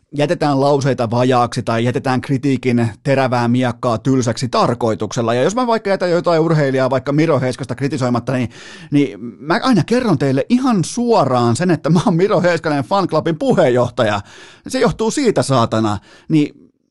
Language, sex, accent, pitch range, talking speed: Finnish, male, native, 125-180 Hz, 150 wpm